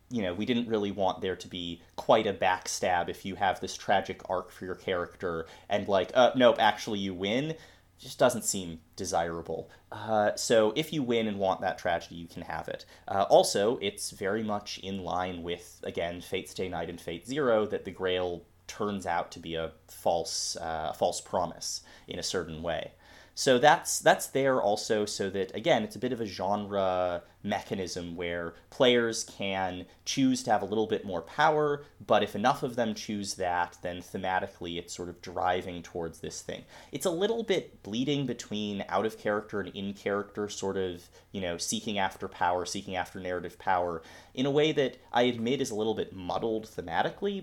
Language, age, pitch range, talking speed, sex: English, 30-49, 90-110 Hz, 190 wpm, male